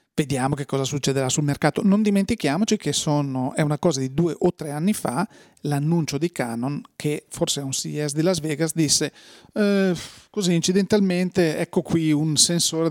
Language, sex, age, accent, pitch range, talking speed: Italian, male, 40-59, native, 140-170 Hz, 175 wpm